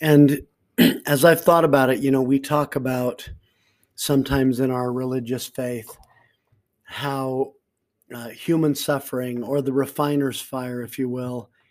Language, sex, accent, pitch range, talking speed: English, male, American, 125-140 Hz, 140 wpm